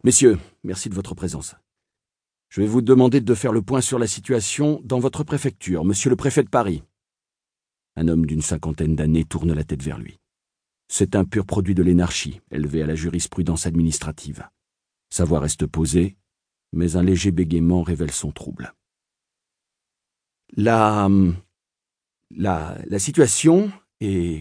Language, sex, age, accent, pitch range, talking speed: French, male, 40-59, French, 90-125 Hz, 155 wpm